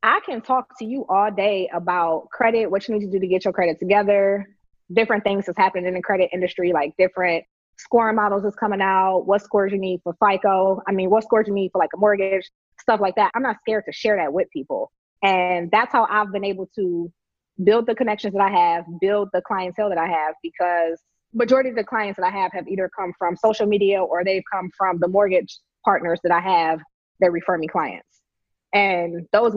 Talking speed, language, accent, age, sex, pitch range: 225 wpm, English, American, 20-39, female, 180-220 Hz